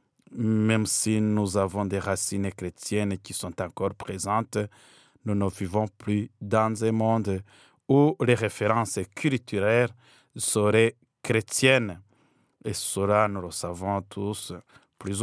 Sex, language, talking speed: male, French, 120 wpm